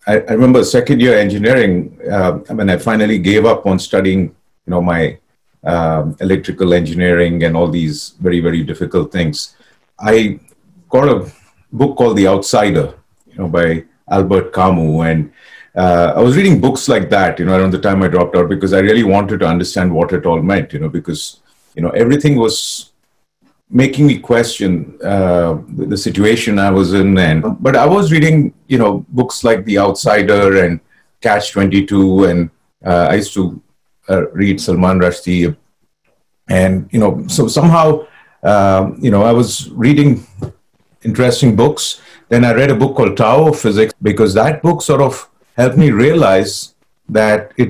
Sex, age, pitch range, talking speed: male, 40-59, 90-115 Hz, 175 wpm